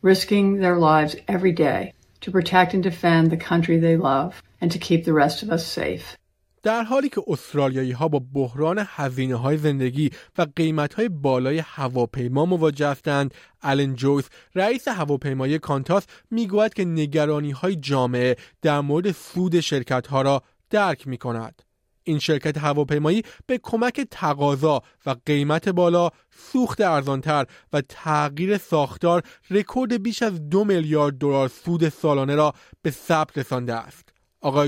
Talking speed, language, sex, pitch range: 135 wpm, Persian, male, 140-185 Hz